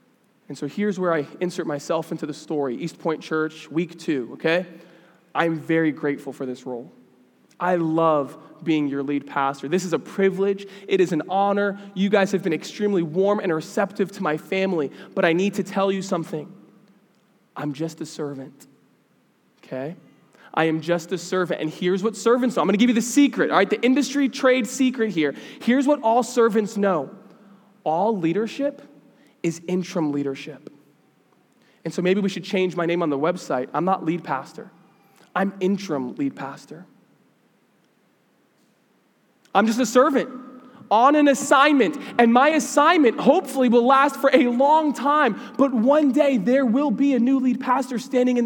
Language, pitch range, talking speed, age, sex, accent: English, 165-240 Hz, 175 wpm, 20-39, male, American